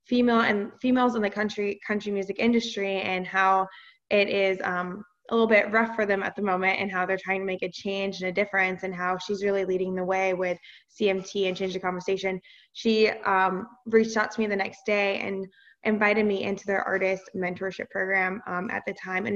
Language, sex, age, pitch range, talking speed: English, female, 20-39, 190-220 Hz, 215 wpm